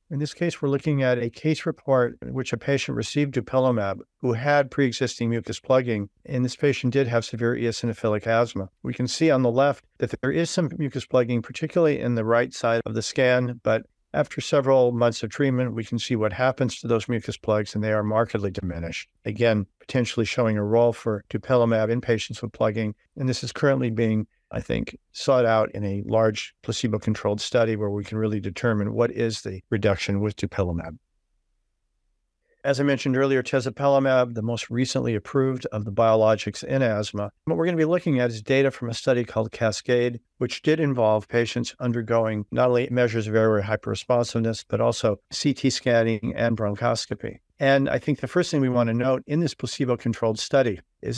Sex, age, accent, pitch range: male, 50-69, American, 110-130 Hz